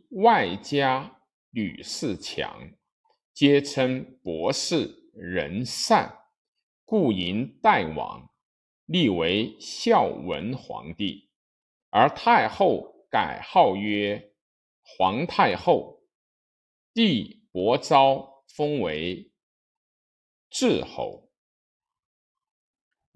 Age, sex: 50-69, male